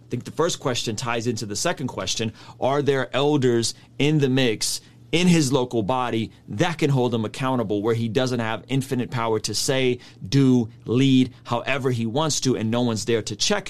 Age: 30-49